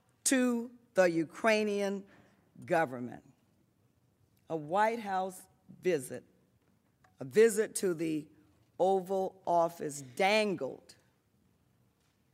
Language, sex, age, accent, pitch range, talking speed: English, female, 40-59, American, 145-195 Hz, 75 wpm